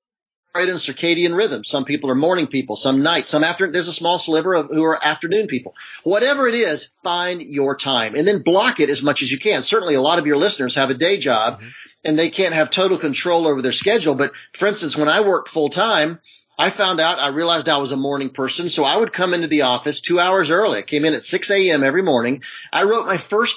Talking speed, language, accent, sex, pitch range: 245 wpm, English, American, male, 140-180 Hz